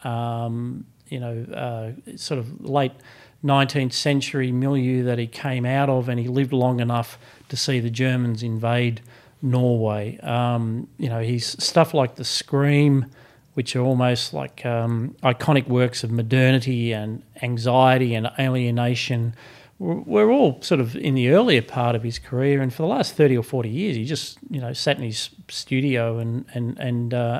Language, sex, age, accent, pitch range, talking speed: English, male, 40-59, Australian, 120-135 Hz, 170 wpm